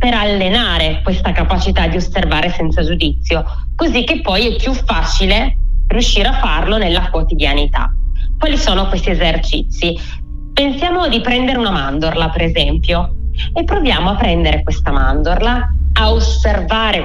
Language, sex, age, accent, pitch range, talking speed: Italian, female, 20-39, native, 165-220 Hz, 135 wpm